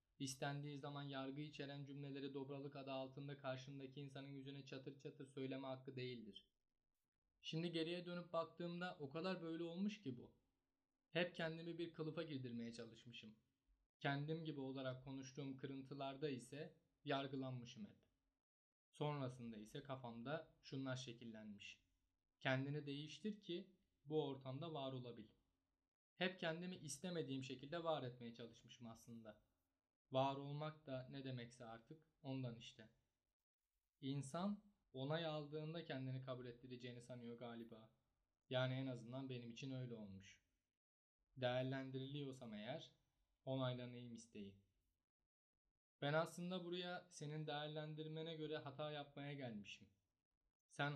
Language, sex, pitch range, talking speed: Turkish, male, 115-150 Hz, 115 wpm